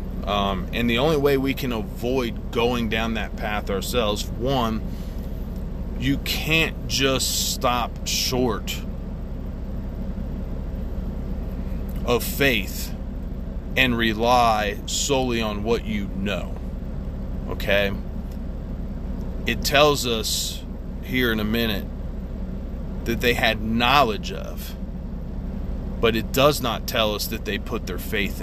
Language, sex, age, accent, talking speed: English, male, 30-49, American, 110 wpm